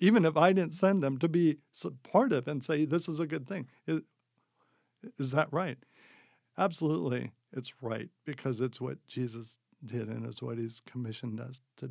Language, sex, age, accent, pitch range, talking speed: English, male, 50-69, American, 120-145 Hz, 175 wpm